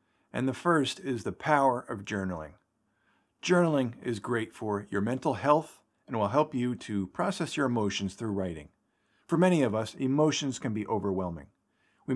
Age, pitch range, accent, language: 50-69, 100-145 Hz, American, English